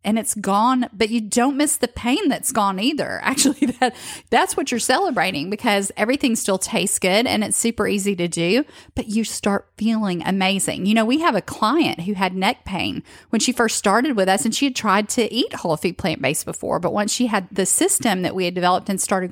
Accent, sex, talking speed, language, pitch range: American, female, 225 wpm, English, 195-255 Hz